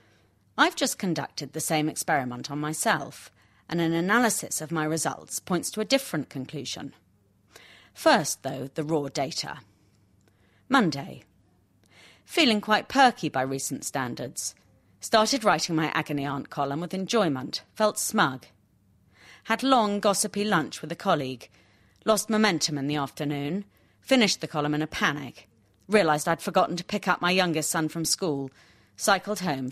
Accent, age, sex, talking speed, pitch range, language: British, 30-49, female, 145 wpm, 130-175 Hz, English